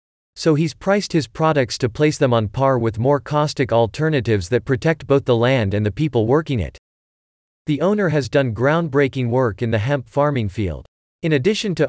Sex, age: male, 40-59